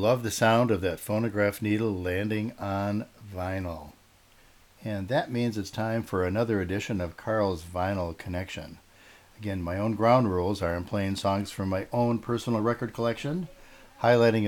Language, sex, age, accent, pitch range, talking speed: English, male, 60-79, American, 90-110 Hz, 160 wpm